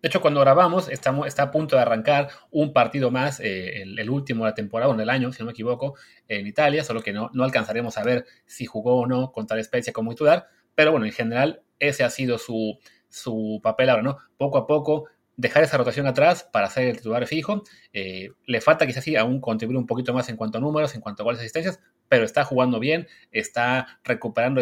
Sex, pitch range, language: male, 115-145 Hz, Spanish